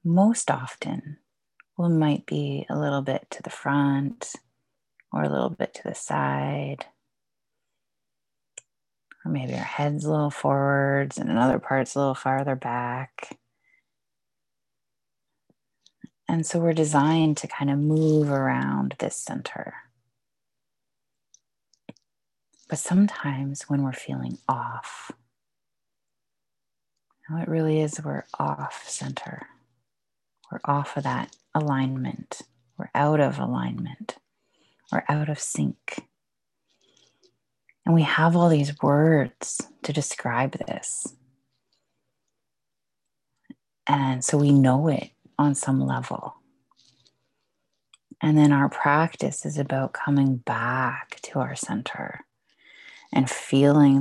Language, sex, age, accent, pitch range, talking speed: English, female, 30-49, American, 125-150 Hz, 110 wpm